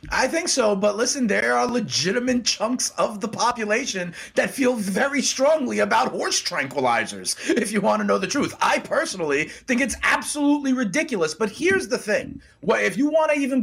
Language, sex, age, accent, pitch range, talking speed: English, male, 30-49, American, 170-250 Hz, 180 wpm